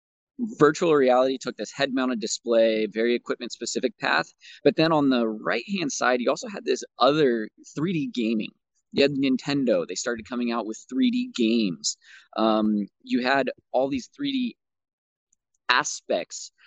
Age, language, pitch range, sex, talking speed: 20-39, English, 115-175 Hz, male, 140 wpm